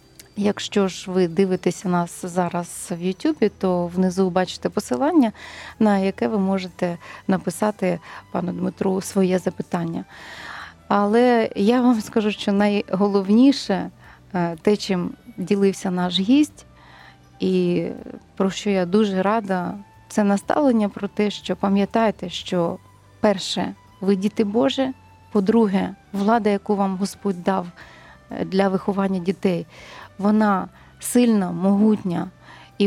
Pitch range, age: 185-215 Hz, 30-49